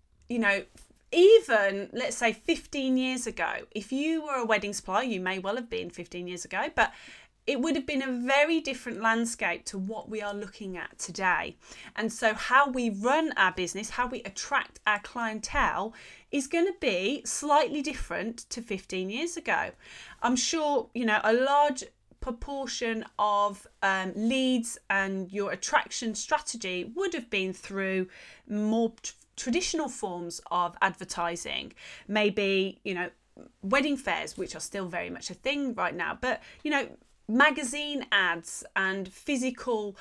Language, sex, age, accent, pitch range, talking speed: English, female, 30-49, British, 195-260 Hz, 155 wpm